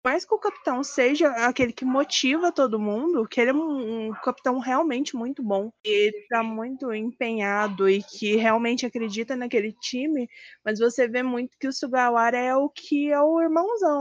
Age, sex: 20-39, female